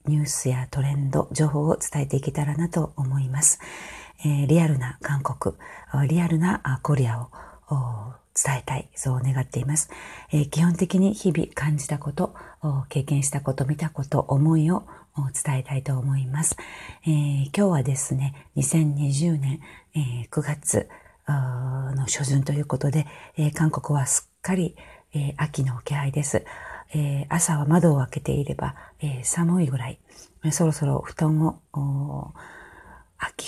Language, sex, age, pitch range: Japanese, female, 40-59, 140-160 Hz